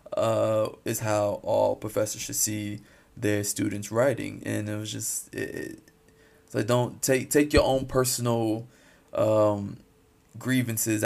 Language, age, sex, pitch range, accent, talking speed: English, 20-39, male, 110-125 Hz, American, 140 wpm